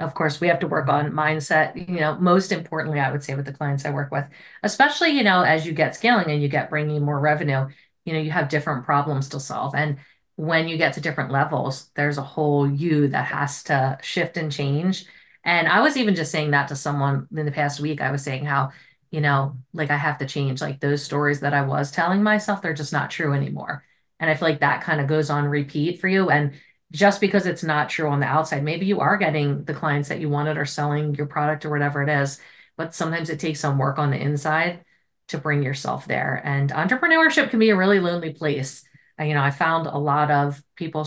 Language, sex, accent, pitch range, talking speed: English, female, American, 145-165 Hz, 240 wpm